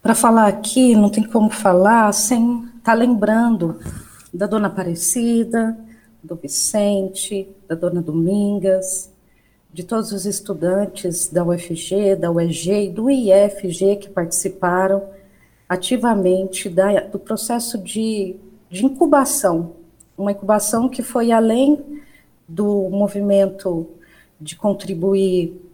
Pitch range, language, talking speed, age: 185-225 Hz, Portuguese, 105 wpm, 40-59